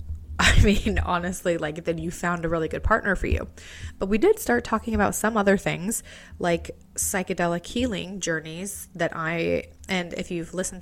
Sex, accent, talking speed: female, American, 175 wpm